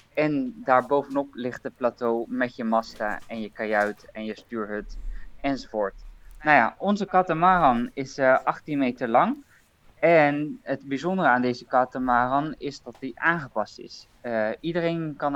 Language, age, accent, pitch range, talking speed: Dutch, 20-39, Dutch, 120-155 Hz, 150 wpm